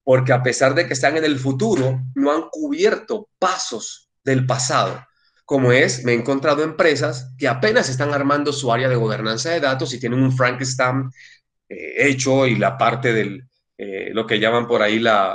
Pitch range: 120-140 Hz